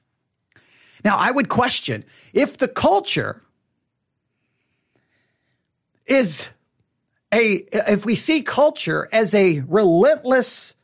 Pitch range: 185-290 Hz